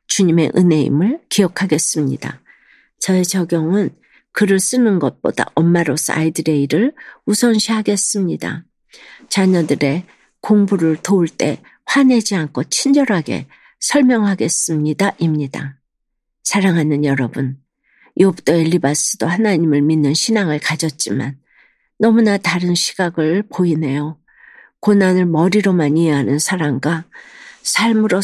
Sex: female